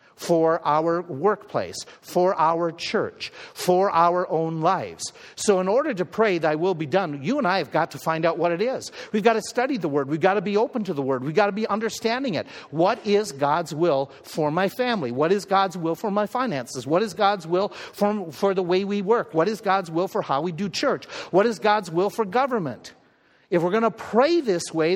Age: 50-69